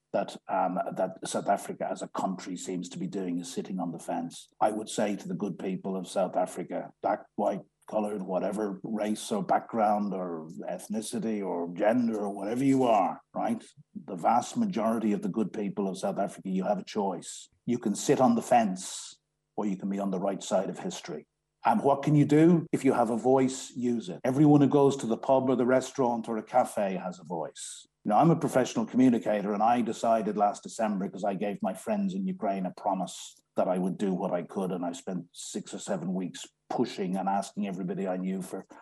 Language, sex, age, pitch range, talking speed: English, male, 50-69, 100-145 Hz, 215 wpm